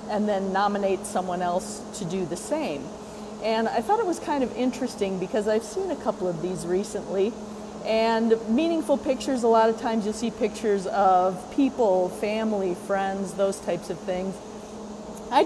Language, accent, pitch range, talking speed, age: English, American, 190-225 Hz, 170 wpm, 30-49